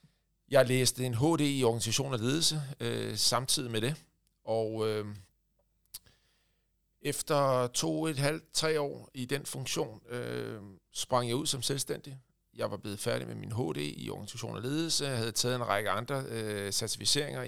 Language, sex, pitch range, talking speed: Danish, male, 105-125 Hz, 165 wpm